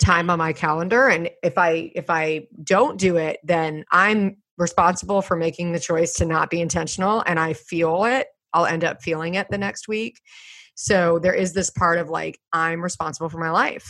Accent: American